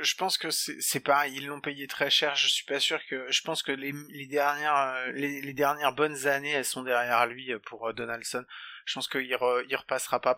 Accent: French